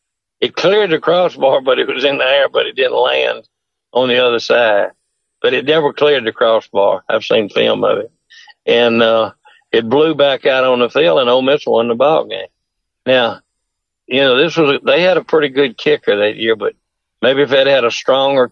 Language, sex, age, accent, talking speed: English, male, 60-79, American, 210 wpm